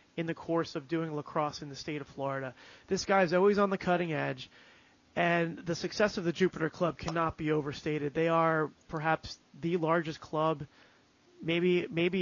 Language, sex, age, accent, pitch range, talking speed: English, male, 30-49, American, 155-185 Hz, 180 wpm